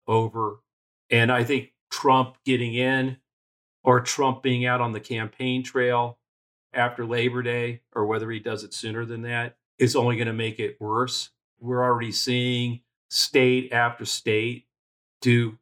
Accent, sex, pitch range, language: American, male, 115-135 Hz, English